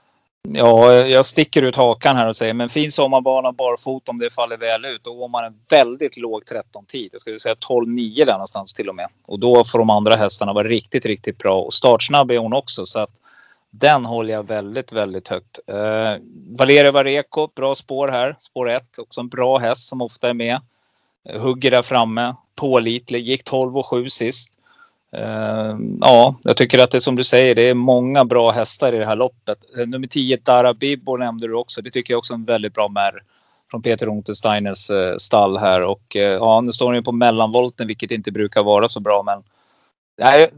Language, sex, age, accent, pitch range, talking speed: Swedish, male, 30-49, native, 115-130 Hz, 200 wpm